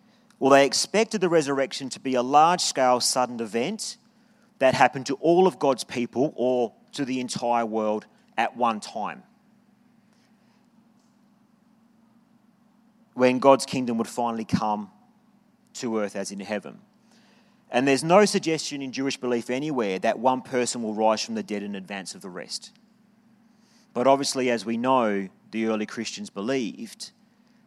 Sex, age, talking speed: male, 40-59, 145 wpm